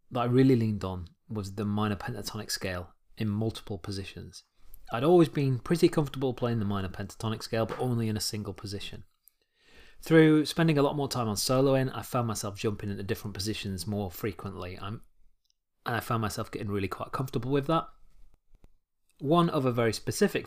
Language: English